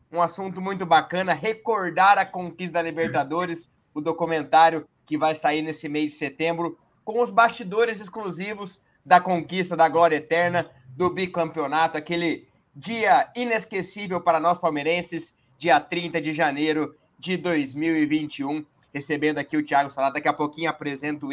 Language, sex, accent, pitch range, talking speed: Portuguese, male, Brazilian, 155-185 Hz, 140 wpm